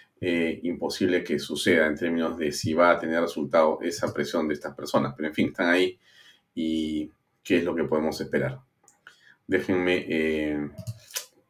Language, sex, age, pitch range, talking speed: Spanish, male, 40-59, 85-120 Hz, 160 wpm